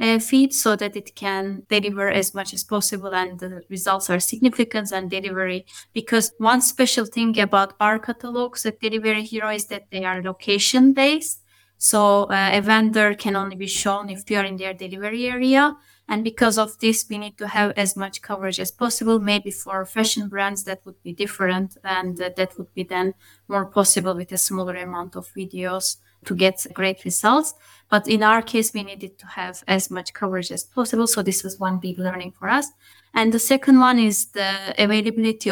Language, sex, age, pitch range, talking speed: English, female, 20-39, 190-225 Hz, 195 wpm